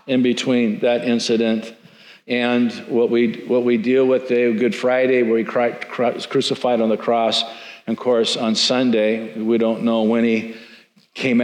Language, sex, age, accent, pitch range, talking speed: English, male, 50-69, American, 115-140 Hz, 170 wpm